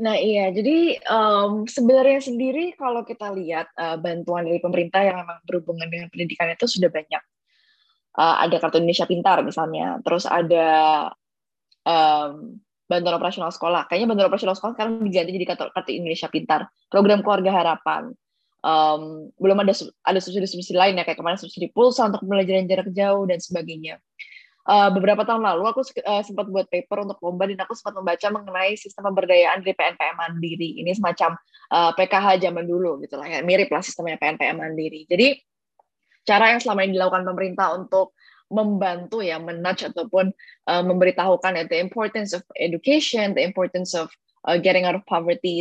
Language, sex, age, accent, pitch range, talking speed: Indonesian, female, 20-39, native, 170-205 Hz, 160 wpm